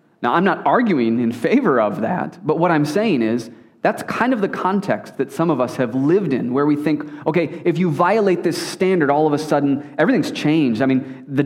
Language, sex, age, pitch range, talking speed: English, male, 30-49, 120-150 Hz, 225 wpm